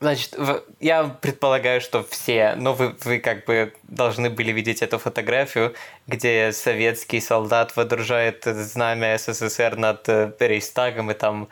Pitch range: 110-125 Hz